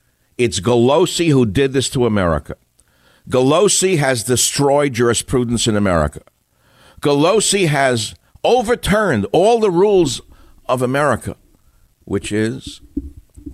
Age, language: 60-79, English